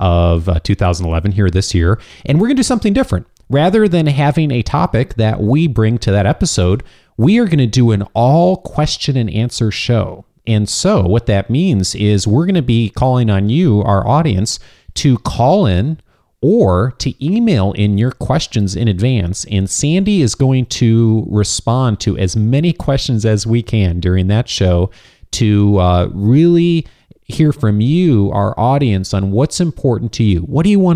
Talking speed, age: 180 wpm, 40-59